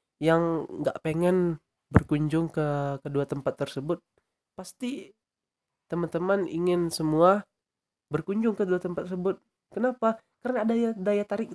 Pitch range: 160-210 Hz